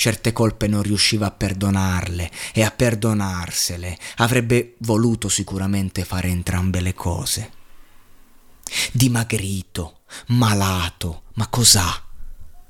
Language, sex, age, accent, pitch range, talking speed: Italian, male, 30-49, native, 95-110 Hz, 95 wpm